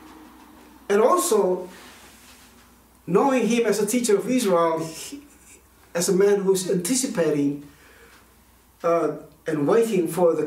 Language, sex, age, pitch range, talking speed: English, male, 60-79, 145-200 Hz, 110 wpm